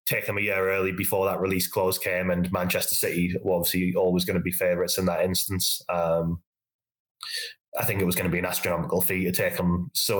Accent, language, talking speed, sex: British, English, 225 wpm, male